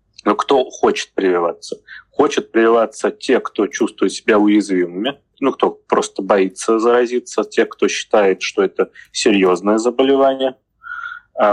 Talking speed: 125 wpm